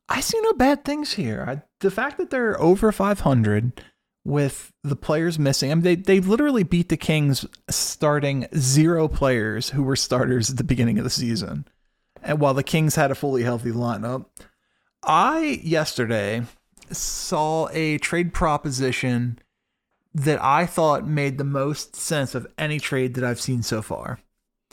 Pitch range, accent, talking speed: 130-165 Hz, American, 160 wpm